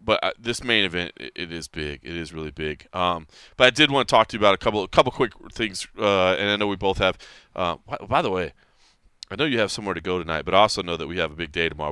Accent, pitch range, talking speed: American, 90-120 Hz, 290 wpm